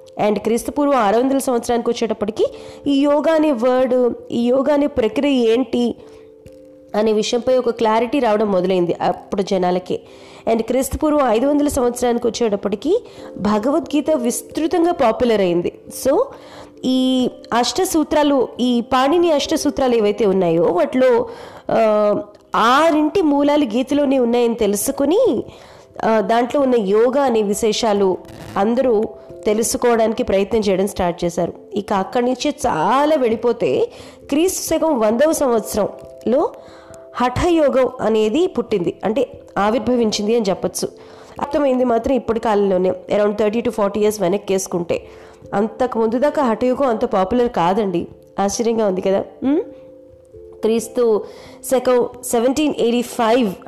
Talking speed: 110 wpm